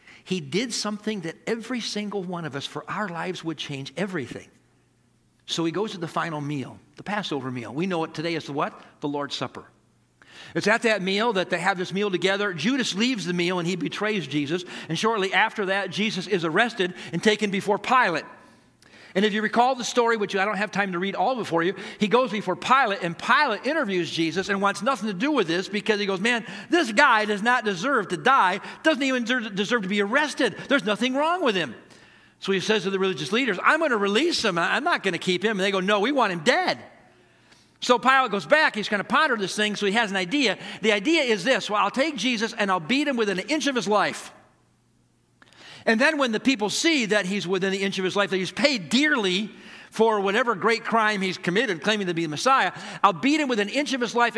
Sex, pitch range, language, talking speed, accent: male, 175-225 Hz, English, 235 wpm, American